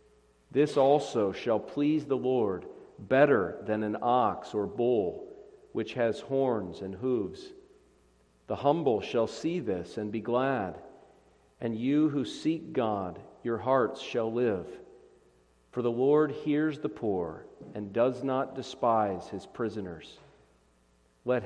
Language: English